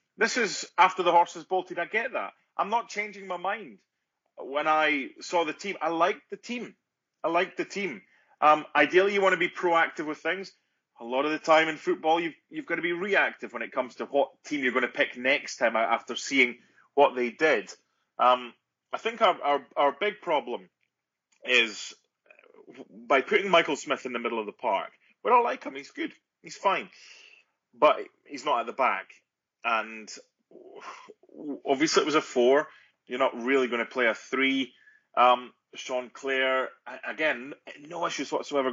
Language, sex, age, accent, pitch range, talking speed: English, male, 30-49, British, 140-210 Hz, 185 wpm